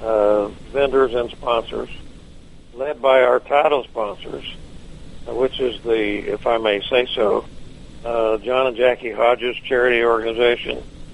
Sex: male